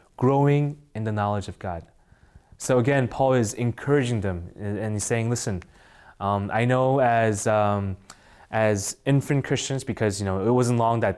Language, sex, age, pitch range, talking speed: English, male, 20-39, 105-125 Hz, 165 wpm